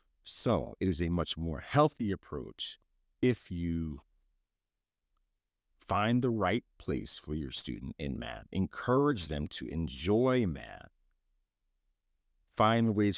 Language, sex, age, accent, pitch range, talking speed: English, male, 50-69, American, 80-105 Hz, 125 wpm